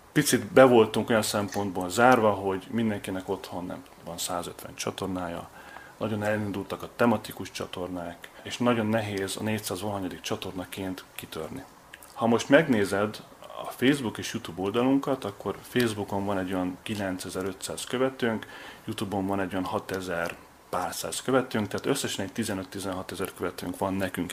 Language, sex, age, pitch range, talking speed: Hungarian, male, 30-49, 95-115 Hz, 140 wpm